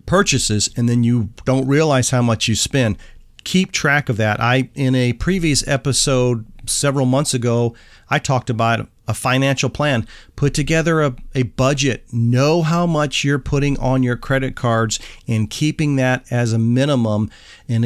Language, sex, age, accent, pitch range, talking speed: English, male, 40-59, American, 115-145 Hz, 165 wpm